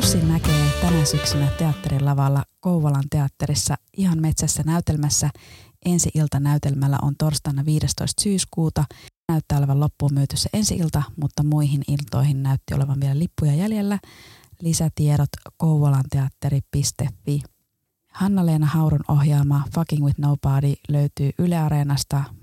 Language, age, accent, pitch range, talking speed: Finnish, 20-39, native, 140-160 Hz, 110 wpm